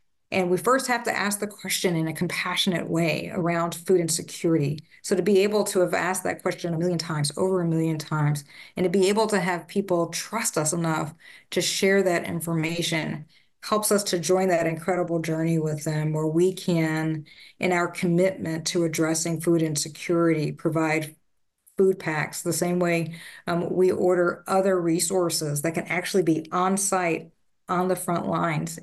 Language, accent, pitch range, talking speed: English, American, 165-185 Hz, 175 wpm